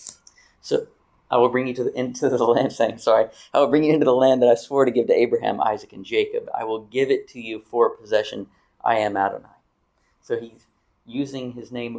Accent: American